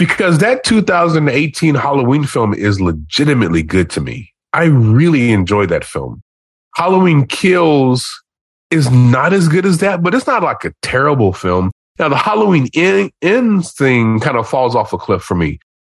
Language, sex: English, male